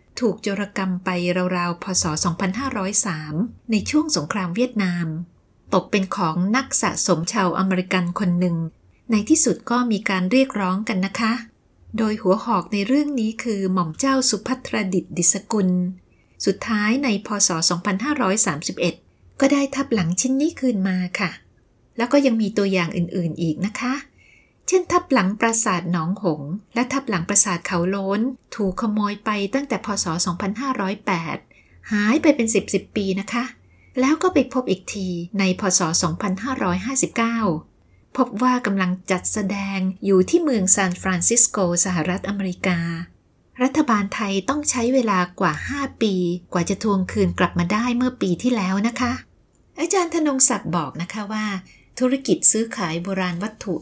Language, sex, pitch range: Thai, female, 180-235 Hz